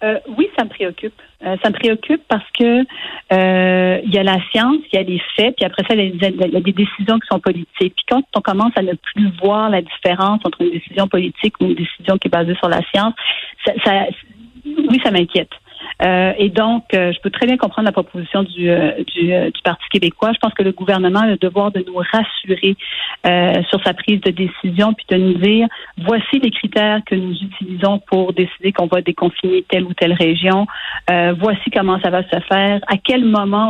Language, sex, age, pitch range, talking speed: French, female, 40-59, 185-215 Hz, 225 wpm